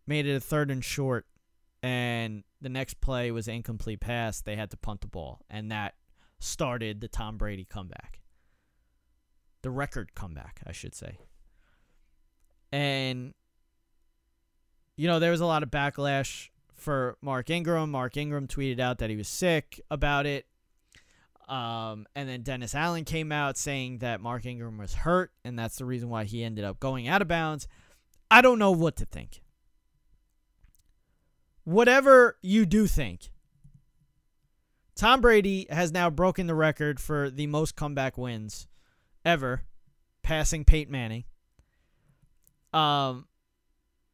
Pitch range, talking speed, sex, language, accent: 95-155 Hz, 145 wpm, male, English, American